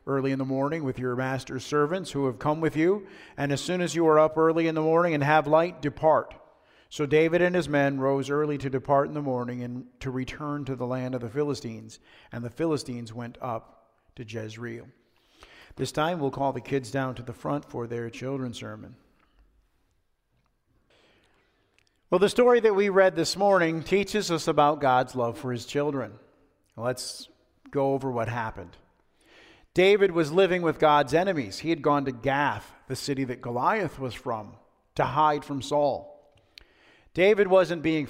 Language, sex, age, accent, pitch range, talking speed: English, male, 50-69, American, 125-155 Hz, 180 wpm